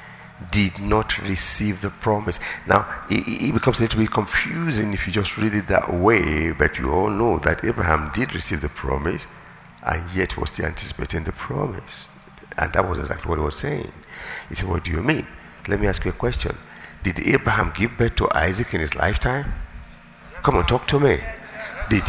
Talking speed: 195 wpm